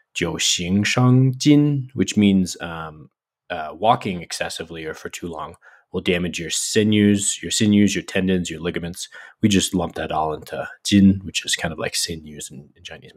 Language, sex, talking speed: English, male, 175 wpm